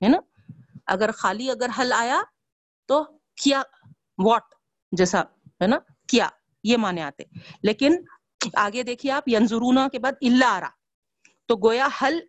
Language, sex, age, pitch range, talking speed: Urdu, female, 40-59, 195-275 Hz, 130 wpm